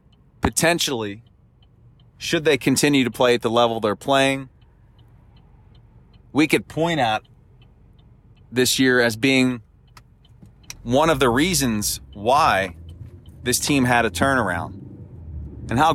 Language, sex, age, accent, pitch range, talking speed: English, male, 30-49, American, 110-130 Hz, 115 wpm